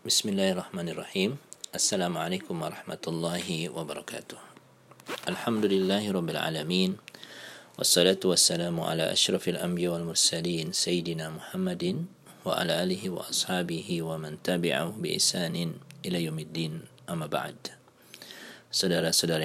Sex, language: male, Indonesian